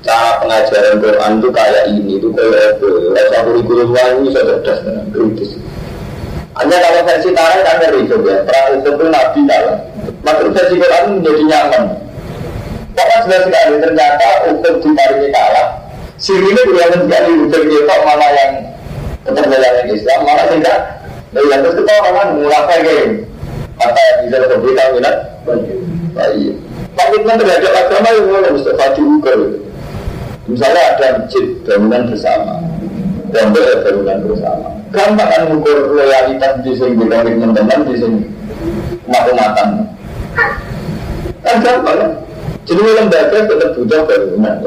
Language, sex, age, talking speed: Indonesian, male, 40-59, 50 wpm